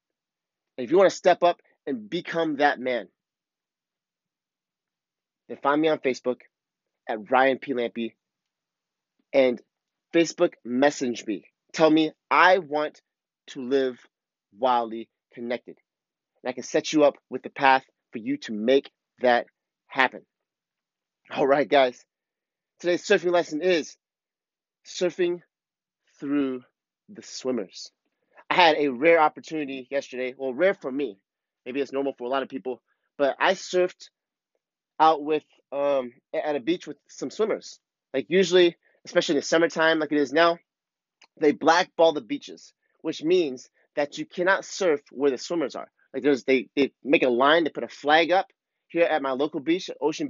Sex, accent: male, American